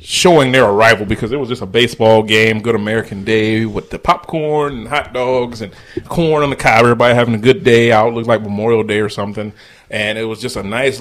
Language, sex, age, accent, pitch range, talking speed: English, male, 30-49, American, 110-130 Hz, 235 wpm